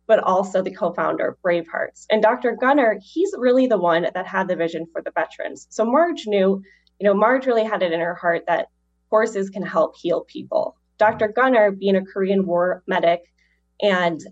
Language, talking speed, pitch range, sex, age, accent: English, 190 wpm, 165-195 Hz, female, 10-29, American